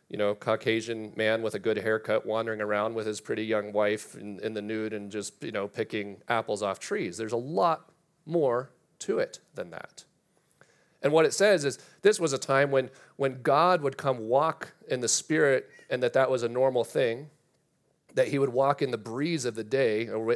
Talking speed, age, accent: 205 wpm, 30-49, American